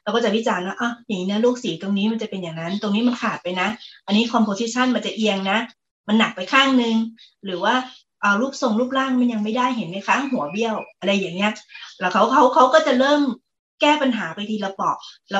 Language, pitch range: Thai, 195-245 Hz